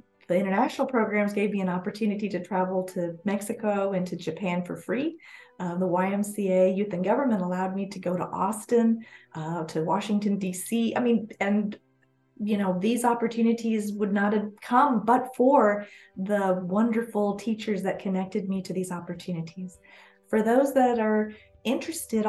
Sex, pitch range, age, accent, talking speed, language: female, 190-235 Hz, 30-49, American, 160 wpm, English